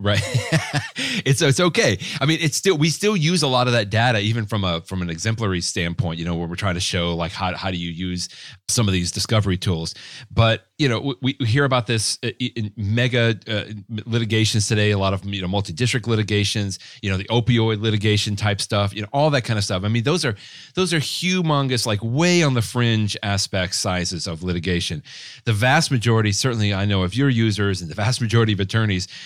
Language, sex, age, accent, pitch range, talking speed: English, male, 30-49, American, 100-125 Hz, 215 wpm